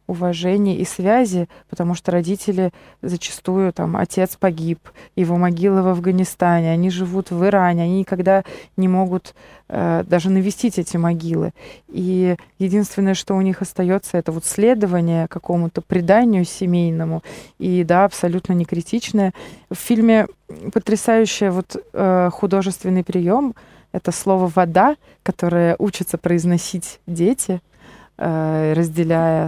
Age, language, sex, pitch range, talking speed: 20-39, Russian, female, 175-195 Hz, 120 wpm